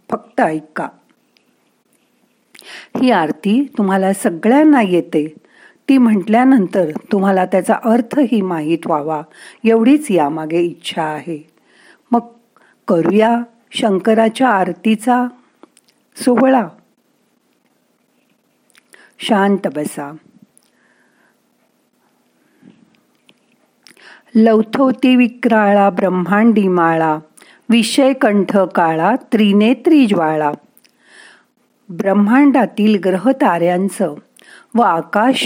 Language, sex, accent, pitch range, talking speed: Marathi, female, native, 175-245 Hz, 65 wpm